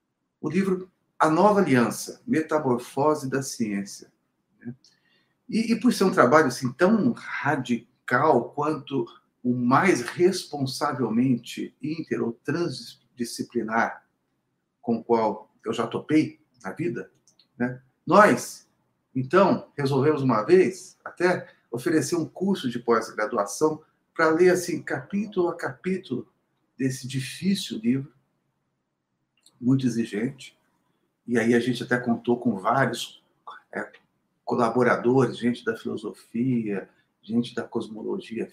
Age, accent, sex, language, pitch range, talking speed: 50-69, Brazilian, male, Portuguese, 120-155 Hz, 110 wpm